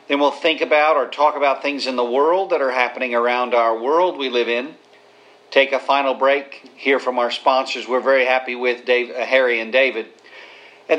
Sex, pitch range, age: male, 130-155 Hz, 50-69